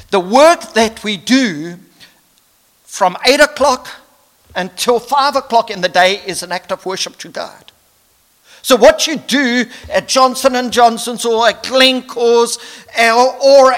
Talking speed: 140 wpm